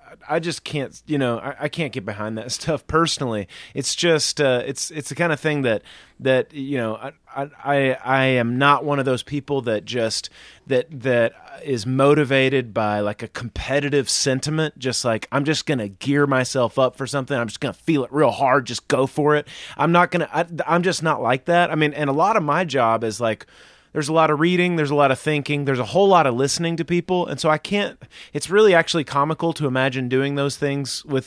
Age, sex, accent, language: 30-49, male, American, English